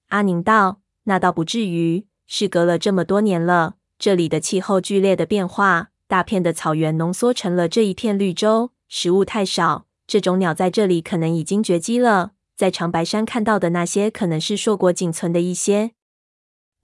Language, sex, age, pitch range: Chinese, female, 20-39, 175-210 Hz